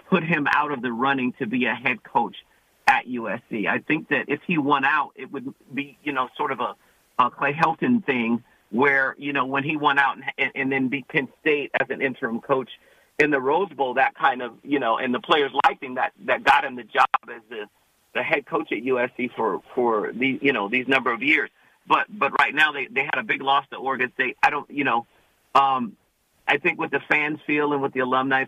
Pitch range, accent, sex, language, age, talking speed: 125-140 Hz, American, male, English, 50-69, 235 wpm